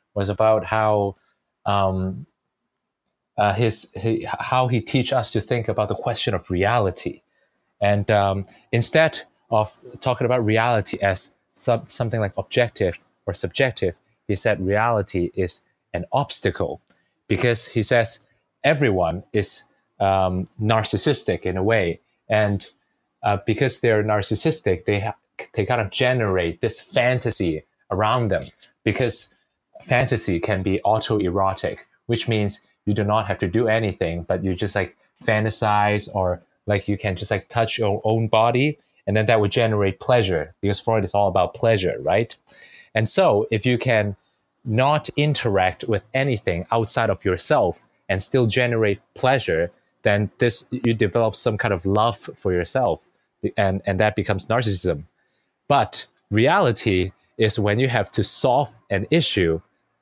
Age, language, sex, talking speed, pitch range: 20-39, English, male, 145 wpm, 100-115 Hz